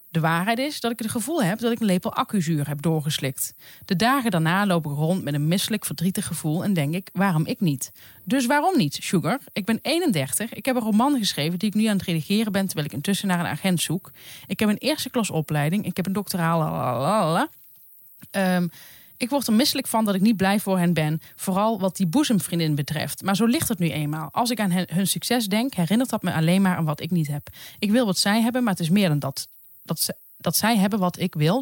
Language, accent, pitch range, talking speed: Dutch, Dutch, 160-220 Hz, 235 wpm